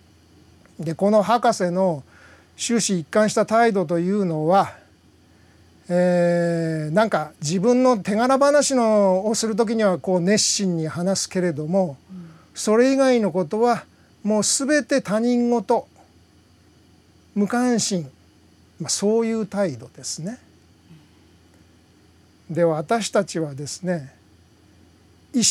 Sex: male